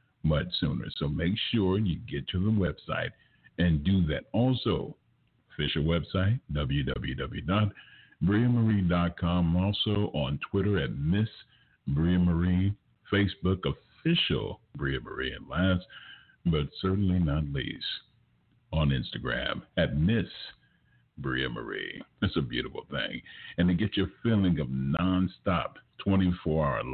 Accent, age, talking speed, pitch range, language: American, 50-69, 110 wpm, 80-100 Hz, English